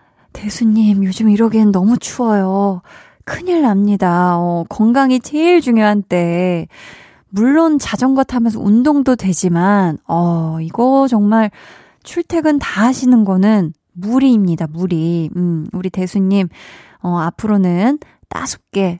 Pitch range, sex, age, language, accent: 185-245 Hz, female, 20-39, Korean, native